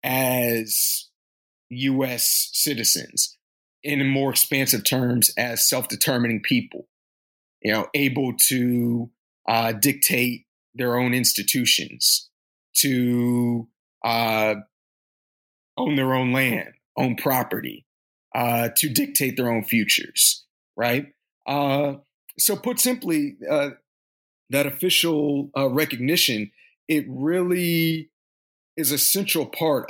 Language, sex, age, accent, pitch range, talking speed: English, male, 40-59, American, 115-140 Hz, 100 wpm